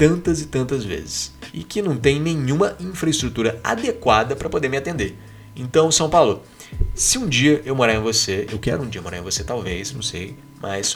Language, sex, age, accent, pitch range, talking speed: Portuguese, male, 20-39, Brazilian, 100-130 Hz, 195 wpm